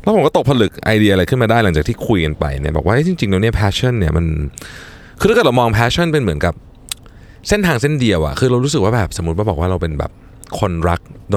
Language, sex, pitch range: Thai, male, 85-125 Hz